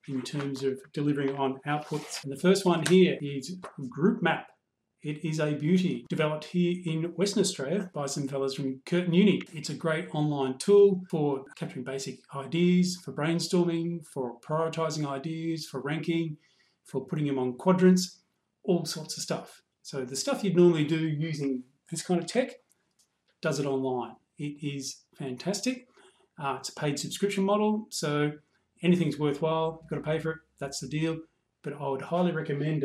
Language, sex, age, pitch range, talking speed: English, male, 40-59, 140-175 Hz, 170 wpm